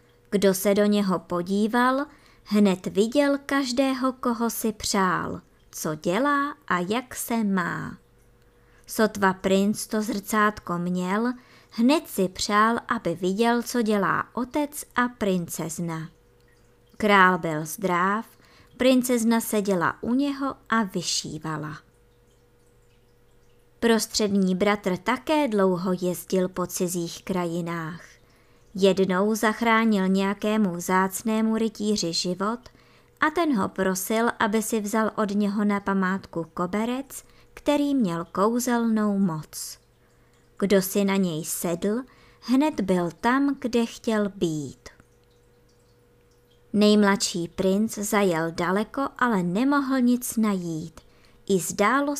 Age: 20-39